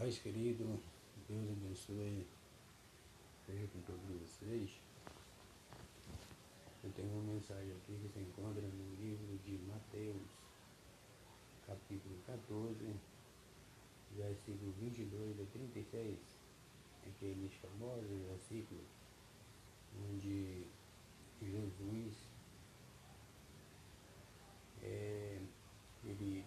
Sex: male